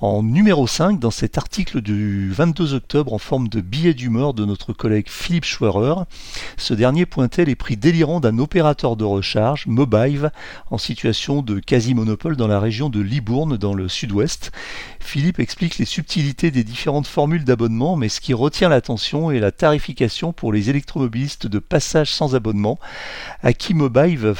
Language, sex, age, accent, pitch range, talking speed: French, male, 40-59, French, 110-150 Hz, 165 wpm